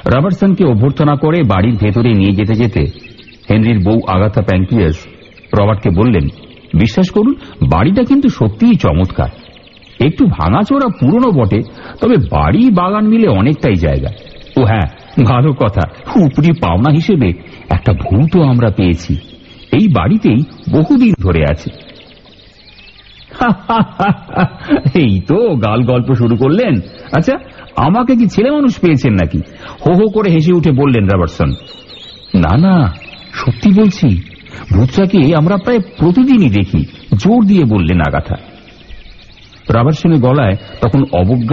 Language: Bengali